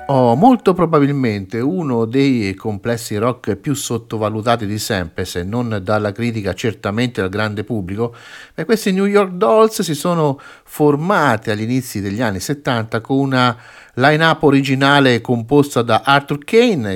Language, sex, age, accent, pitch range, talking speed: Italian, male, 50-69, native, 100-140 Hz, 140 wpm